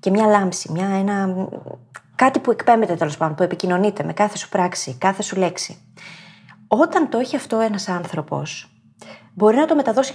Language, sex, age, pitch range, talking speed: Greek, female, 20-39, 165-240 Hz, 160 wpm